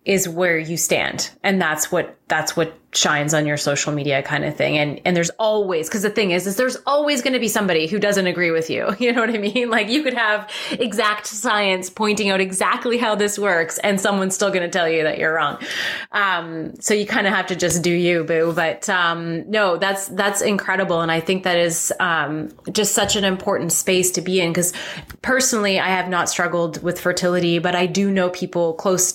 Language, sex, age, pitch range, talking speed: English, female, 30-49, 175-225 Hz, 225 wpm